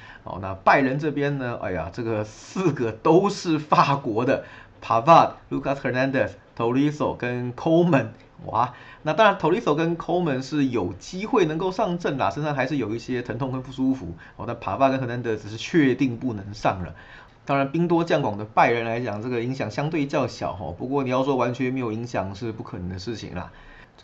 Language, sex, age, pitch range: Chinese, male, 30-49, 105-140 Hz